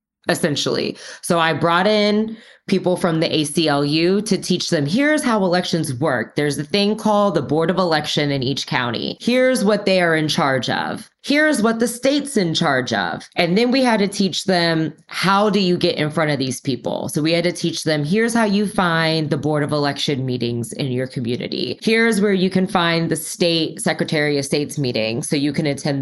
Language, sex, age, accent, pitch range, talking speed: English, female, 20-39, American, 145-195 Hz, 210 wpm